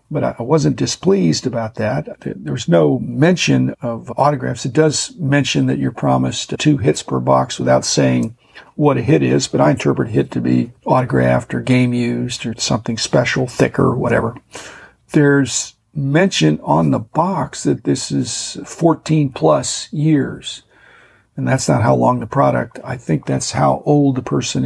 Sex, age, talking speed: male, 50-69, 165 wpm